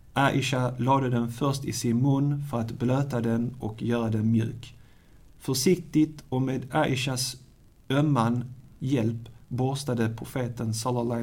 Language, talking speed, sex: Swedish, 130 wpm, male